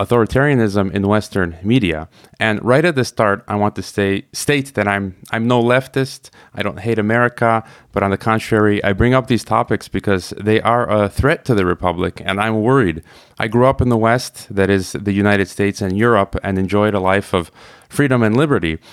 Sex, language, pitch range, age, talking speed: male, English, 100-120 Hz, 30-49, 200 wpm